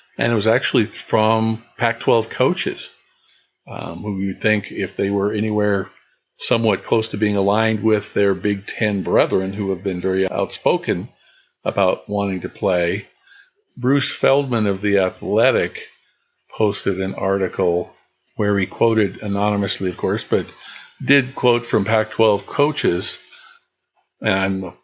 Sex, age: male, 50-69